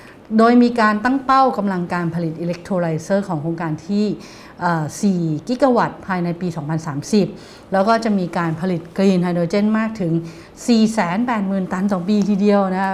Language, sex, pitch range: English, female, 170-220 Hz